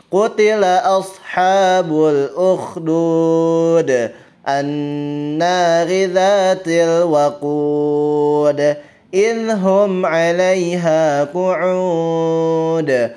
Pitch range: 145-180 Hz